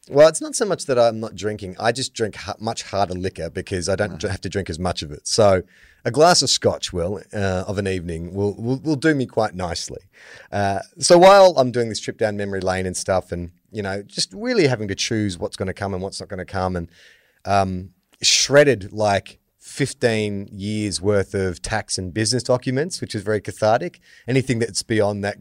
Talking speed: 215 wpm